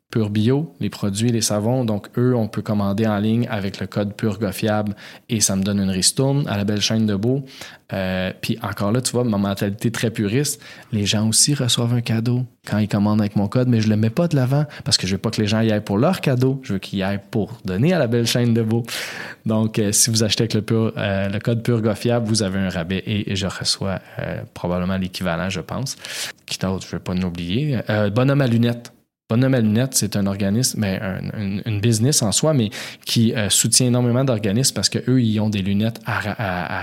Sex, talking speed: male, 245 wpm